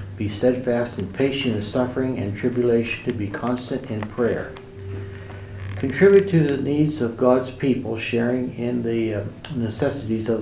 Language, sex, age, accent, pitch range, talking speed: English, male, 60-79, American, 110-125 Hz, 145 wpm